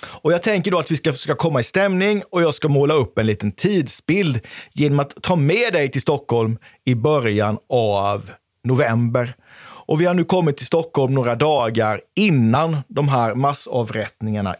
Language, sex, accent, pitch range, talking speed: Swedish, male, native, 125-175 Hz, 175 wpm